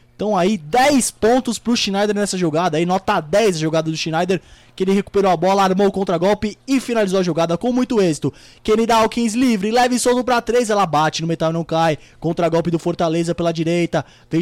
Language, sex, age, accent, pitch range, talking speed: Portuguese, male, 20-39, Brazilian, 160-225 Hz, 210 wpm